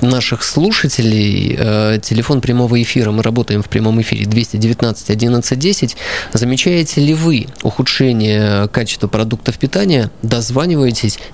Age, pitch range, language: 20-39, 110-140 Hz, Russian